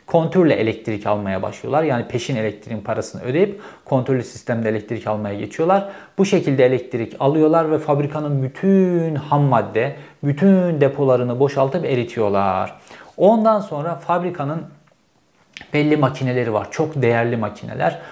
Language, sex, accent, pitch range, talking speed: Turkish, male, native, 125-160 Hz, 115 wpm